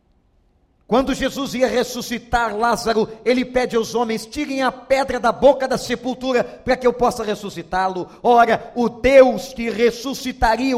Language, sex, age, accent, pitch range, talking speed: Portuguese, male, 50-69, Brazilian, 225-265 Hz, 145 wpm